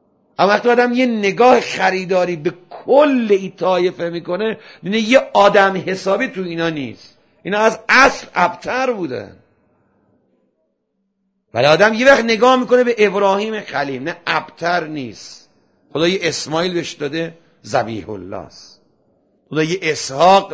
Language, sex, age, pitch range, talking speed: Persian, male, 50-69, 160-220 Hz, 135 wpm